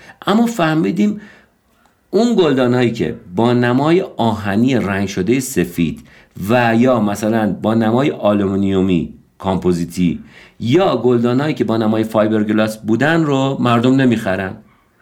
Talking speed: 110 wpm